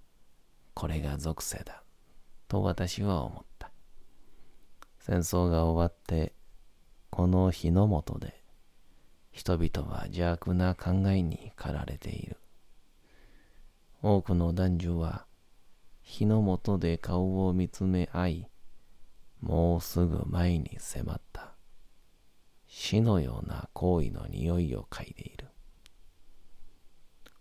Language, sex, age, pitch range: Japanese, male, 40-59, 80-90 Hz